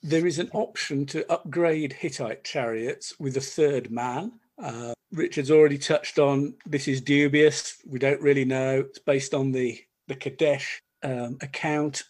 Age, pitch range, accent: 50-69, 130-170 Hz, British